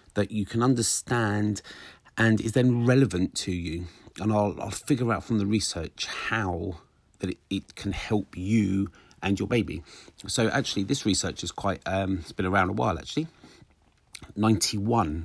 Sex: male